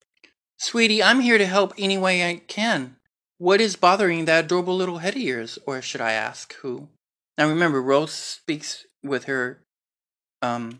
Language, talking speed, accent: English, 165 wpm, American